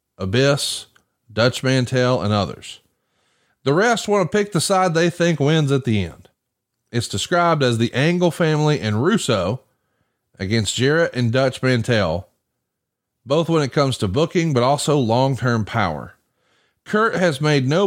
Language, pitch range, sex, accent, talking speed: English, 115-150 Hz, male, American, 150 wpm